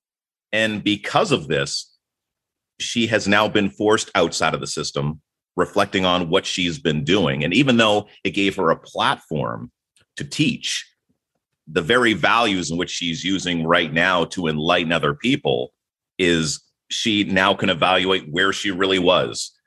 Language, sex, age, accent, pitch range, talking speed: English, male, 40-59, American, 70-95 Hz, 155 wpm